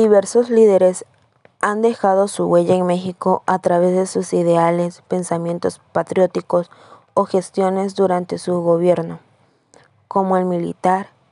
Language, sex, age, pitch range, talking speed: Spanish, female, 20-39, 175-205 Hz, 120 wpm